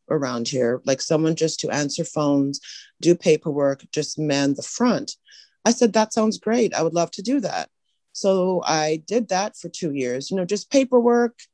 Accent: American